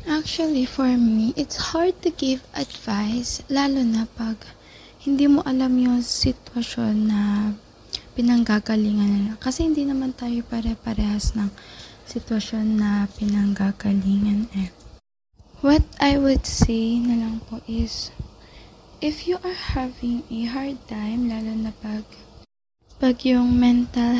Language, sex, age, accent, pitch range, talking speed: Filipino, female, 20-39, native, 225-265 Hz, 120 wpm